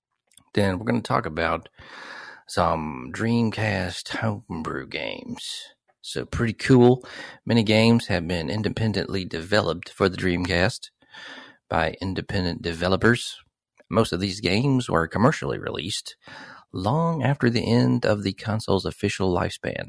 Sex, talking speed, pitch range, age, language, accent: male, 125 wpm, 85-105 Hz, 40-59, English, American